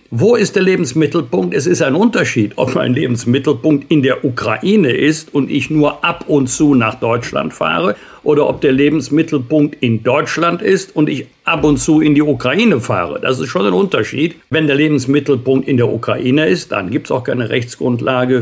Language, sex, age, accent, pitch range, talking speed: German, male, 60-79, German, 125-145 Hz, 190 wpm